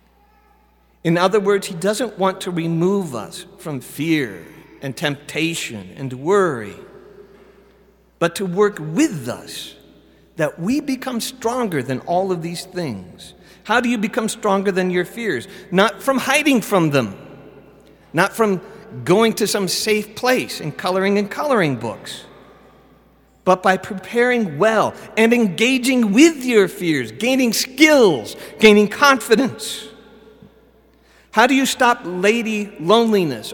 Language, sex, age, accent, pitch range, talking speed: English, male, 50-69, American, 155-215 Hz, 130 wpm